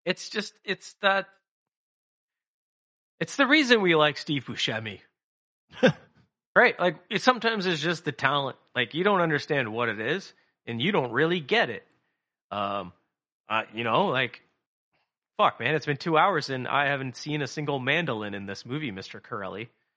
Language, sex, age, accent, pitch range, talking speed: English, male, 30-49, American, 110-160 Hz, 170 wpm